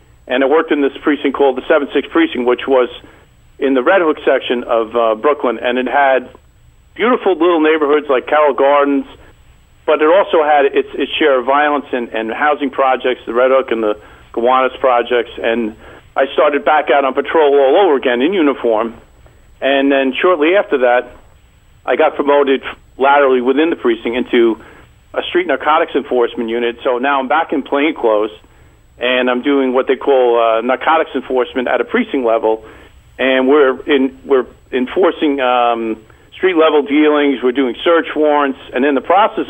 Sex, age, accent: male, 50-69, American